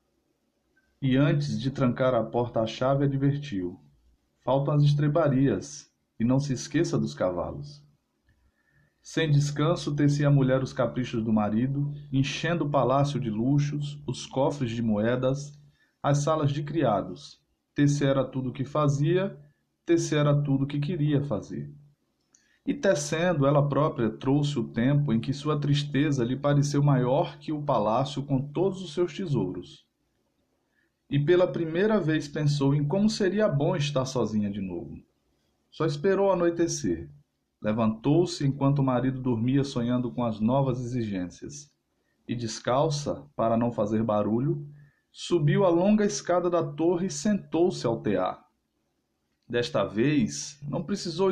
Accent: Brazilian